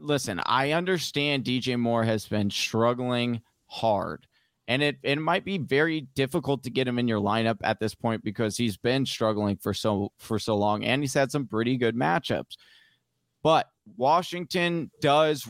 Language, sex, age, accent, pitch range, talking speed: English, male, 30-49, American, 115-140 Hz, 170 wpm